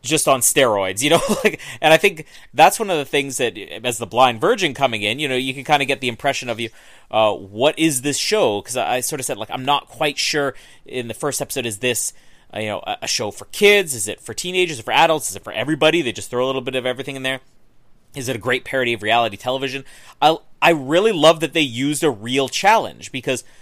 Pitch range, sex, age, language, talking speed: 125-165 Hz, male, 30-49, English, 250 wpm